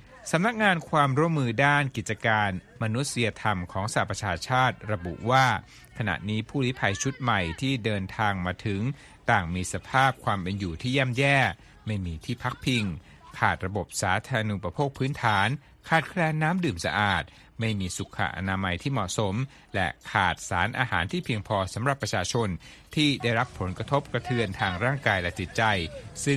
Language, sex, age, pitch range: Thai, male, 60-79, 100-130 Hz